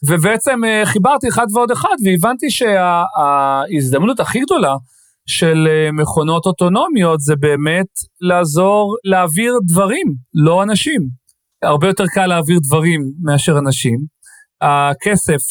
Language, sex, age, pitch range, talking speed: Hebrew, male, 30-49, 150-185 Hz, 110 wpm